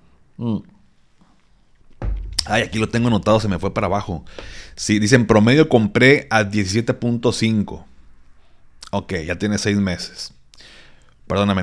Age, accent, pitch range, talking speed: 30-49, Mexican, 95-120 Hz, 120 wpm